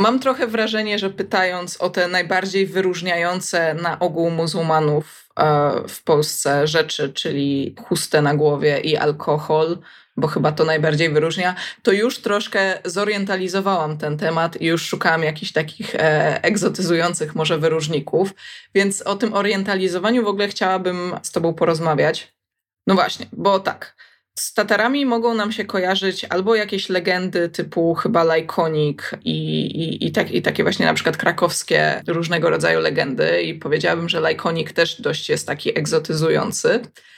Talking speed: 135 wpm